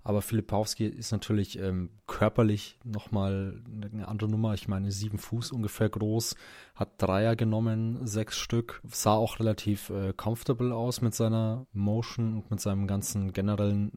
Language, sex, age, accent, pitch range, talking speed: German, male, 20-39, German, 95-110 Hz, 150 wpm